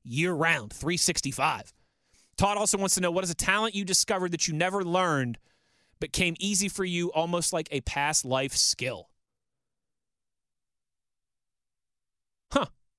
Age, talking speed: 30-49, 130 wpm